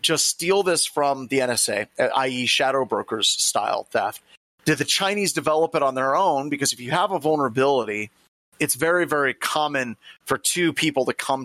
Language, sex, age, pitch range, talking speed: English, male, 30-49, 120-150 Hz, 180 wpm